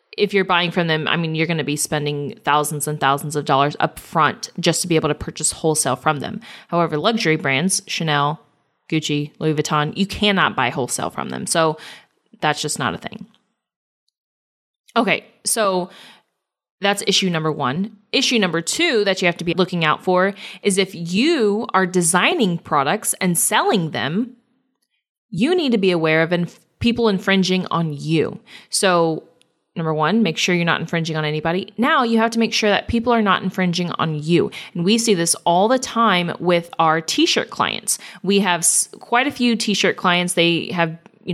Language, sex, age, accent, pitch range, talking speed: English, female, 20-39, American, 165-220 Hz, 185 wpm